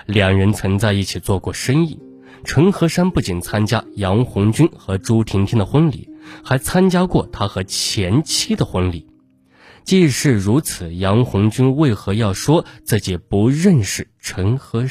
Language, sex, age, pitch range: Chinese, male, 20-39, 100-135 Hz